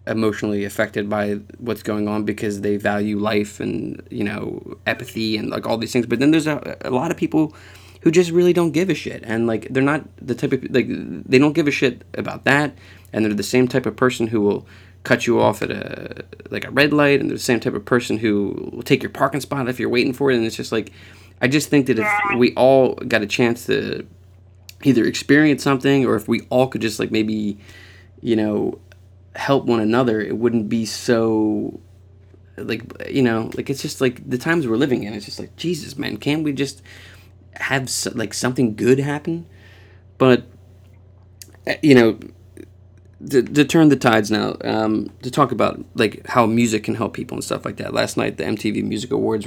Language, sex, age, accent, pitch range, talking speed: English, male, 20-39, American, 100-130 Hz, 210 wpm